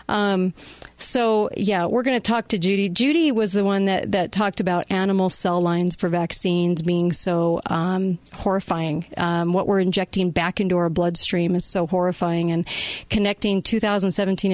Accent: American